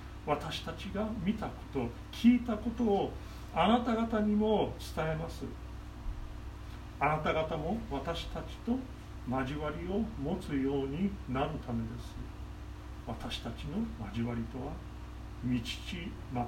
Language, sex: Japanese, male